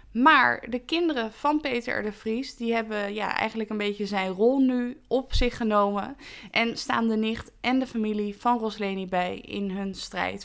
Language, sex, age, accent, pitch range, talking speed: Dutch, female, 20-39, Dutch, 195-245 Hz, 190 wpm